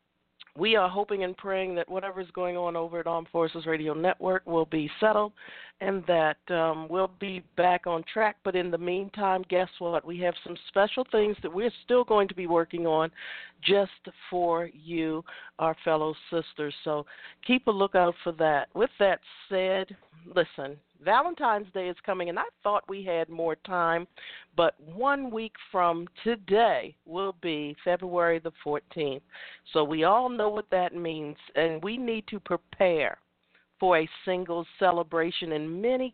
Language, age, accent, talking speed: English, 50-69, American, 170 wpm